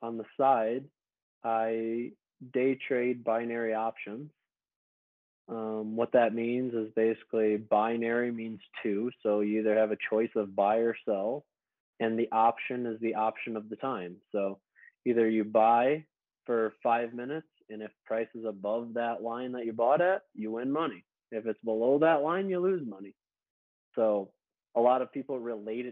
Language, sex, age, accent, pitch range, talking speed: English, male, 20-39, American, 110-125 Hz, 165 wpm